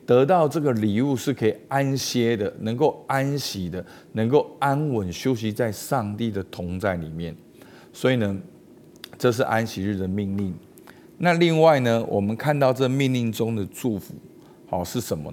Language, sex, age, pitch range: Chinese, male, 50-69, 100-135 Hz